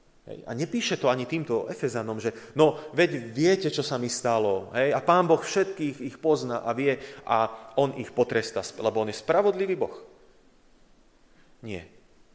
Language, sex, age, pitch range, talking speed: Slovak, male, 30-49, 110-140 Hz, 160 wpm